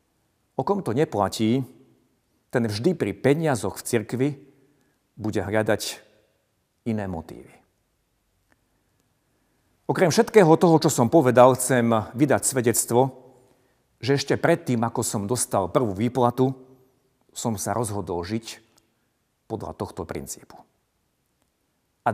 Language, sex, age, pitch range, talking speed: Slovak, male, 50-69, 105-135 Hz, 105 wpm